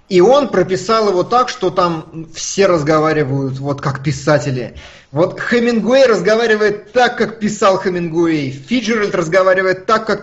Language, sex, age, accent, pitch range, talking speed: Russian, male, 20-39, native, 145-205 Hz, 135 wpm